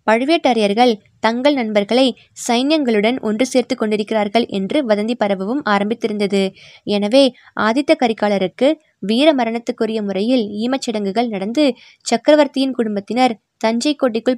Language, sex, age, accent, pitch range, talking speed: Tamil, female, 20-39, native, 210-260 Hz, 90 wpm